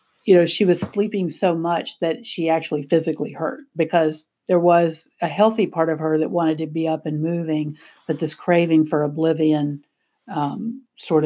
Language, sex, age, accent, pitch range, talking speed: English, female, 50-69, American, 160-200 Hz, 180 wpm